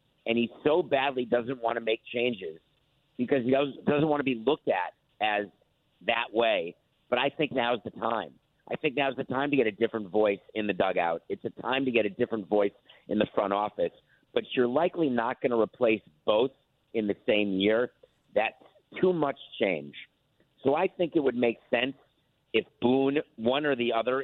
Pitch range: 115-140 Hz